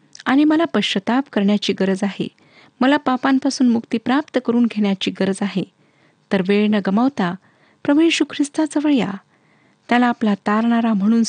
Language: Marathi